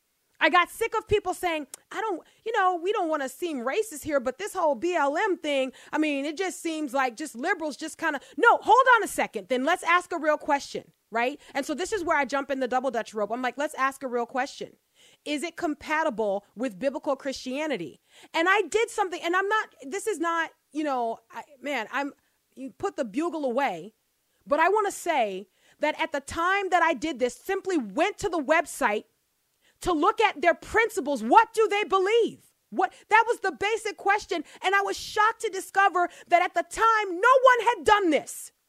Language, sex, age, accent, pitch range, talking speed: English, female, 30-49, American, 285-405 Hz, 210 wpm